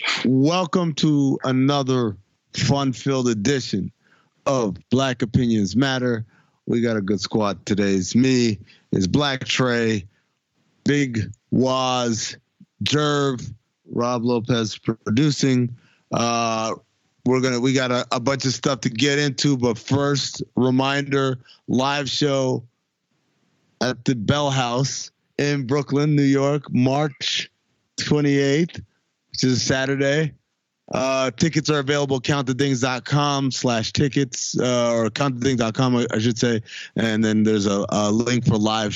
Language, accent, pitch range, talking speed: English, American, 115-140 Hz, 120 wpm